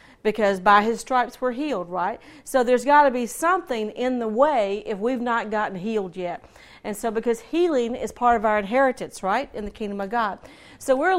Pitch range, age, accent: 240-300 Hz, 40-59, American